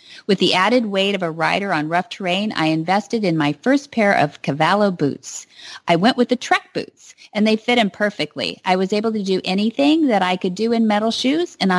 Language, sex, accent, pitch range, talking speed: English, female, American, 160-225 Hz, 225 wpm